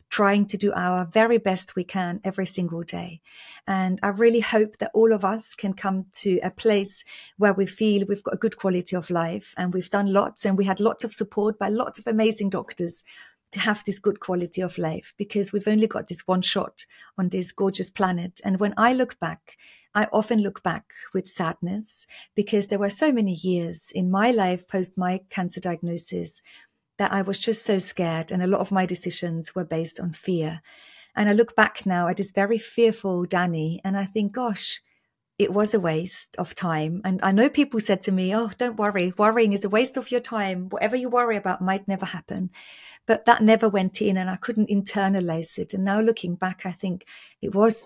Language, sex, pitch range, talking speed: English, female, 180-215 Hz, 210 wpm